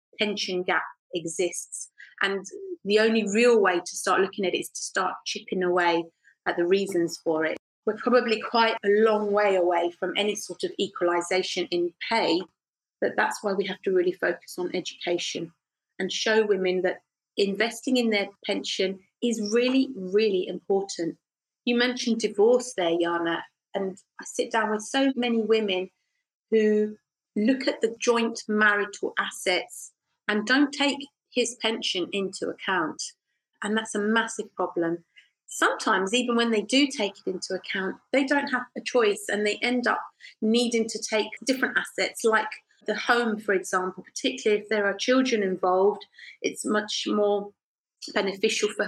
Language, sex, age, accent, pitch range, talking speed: English, female, 30-49, British, 185-235 Hz, 160 wpm